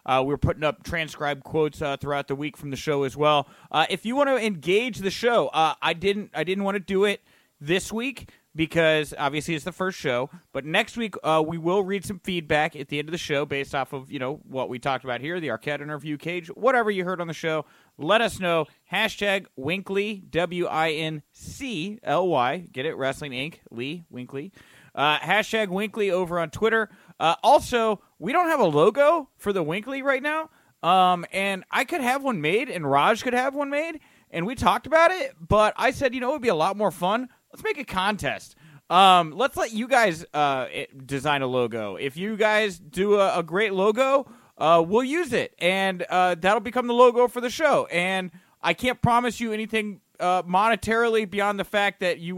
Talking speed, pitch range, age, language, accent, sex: 215 wpm, 150-220 Hz, 30-49, English, American, male